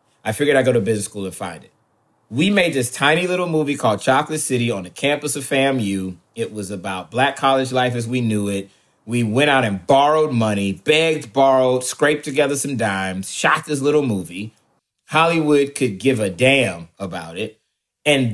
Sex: male